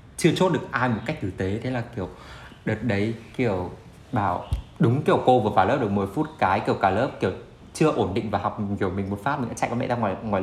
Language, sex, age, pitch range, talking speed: Vietnamese, male, 20-39, 100-125 Hz, 265 wpm